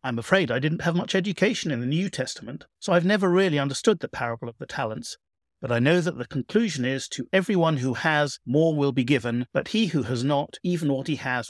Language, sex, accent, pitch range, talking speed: English, male, British, 125-170 Hz, 235 wpm